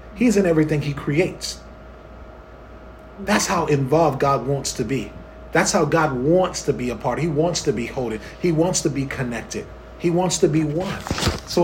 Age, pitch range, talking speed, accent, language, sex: 30-49, 135-180 Hz, 185 wpm, American, English, male